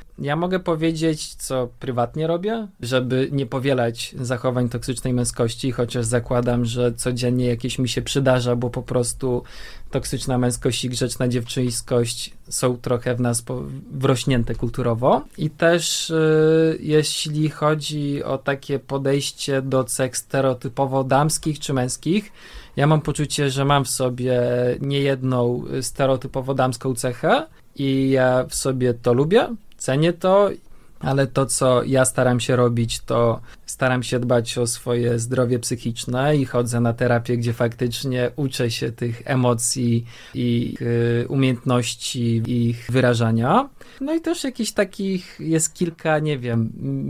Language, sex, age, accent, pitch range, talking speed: Polish, male, 20-39, native, 120-140 Hz, 135 wpm